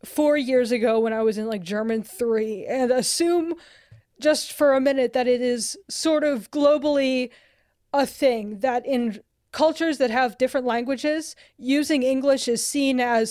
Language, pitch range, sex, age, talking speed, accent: English, 230-280 Hz, female, 20-39, 160 wpm, American